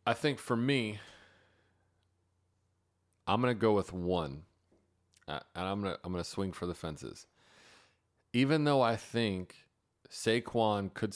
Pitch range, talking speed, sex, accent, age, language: 90-105 Hz, 130 wpm, male, American, 30-49, English